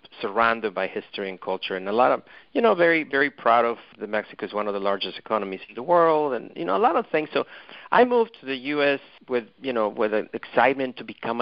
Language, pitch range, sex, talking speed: English, 110-135 Hz, male, 240 wpm